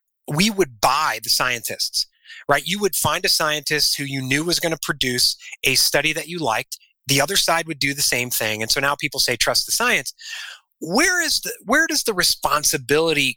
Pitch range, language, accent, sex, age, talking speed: 120-165 Hz, English, American, male, 30-49, 205 wpm